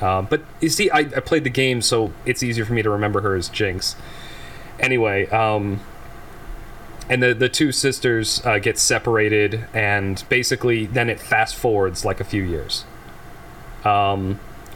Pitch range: 105-115 Hz